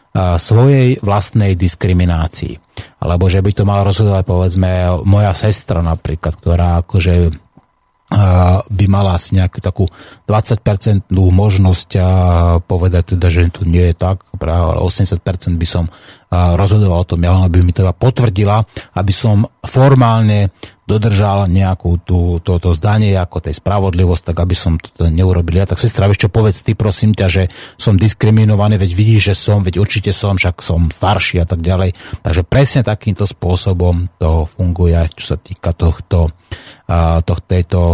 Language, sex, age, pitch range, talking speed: Slovak, male, 30-49, 90-110 Hz, 150 wpm